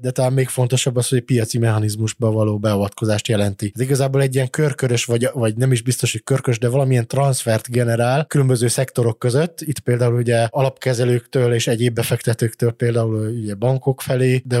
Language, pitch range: Hungarian, 115-135 Hz